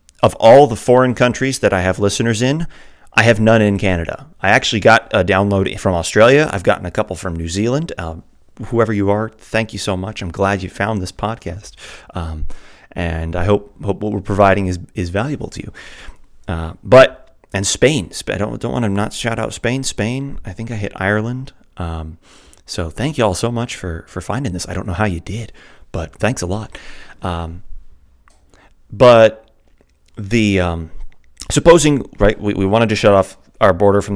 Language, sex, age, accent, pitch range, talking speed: English, male, 30-49, American, 90-110 Hz, 195 wpm